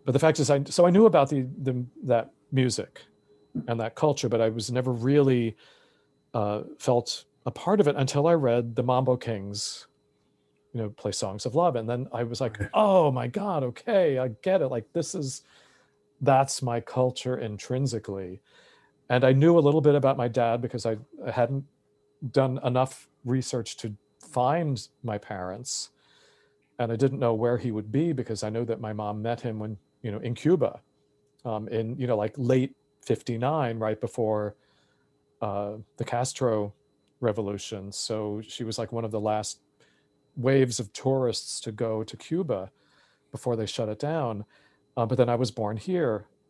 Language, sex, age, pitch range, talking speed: English, male, 40-59, 110-140 Hz, 180 wpm